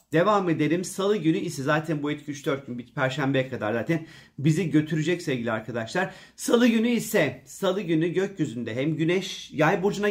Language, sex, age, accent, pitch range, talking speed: Turkish, male, 40-59, native, 135-165 Hz, 165 wpm